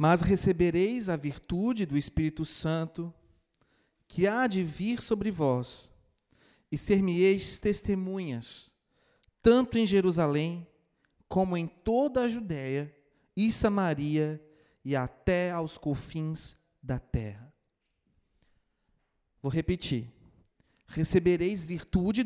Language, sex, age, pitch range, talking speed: Portuguese, male, 40-59, 145-200 Hz, 100 wpm